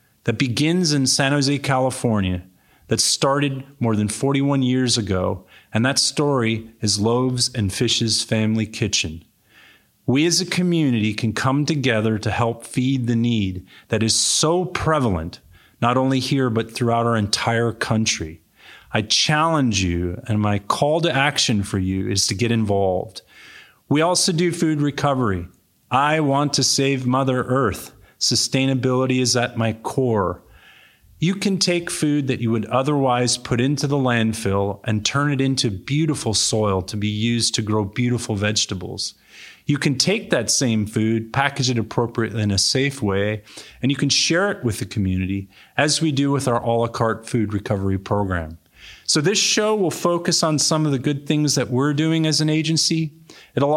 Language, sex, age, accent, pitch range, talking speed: English, male, 30-49, American, 110-145 Hz, 170 wpm